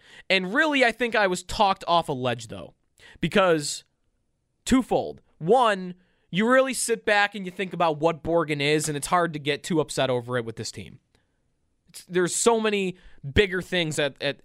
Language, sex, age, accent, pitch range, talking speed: English, male, 20-39, American, 150-200 Hz, 185 wpm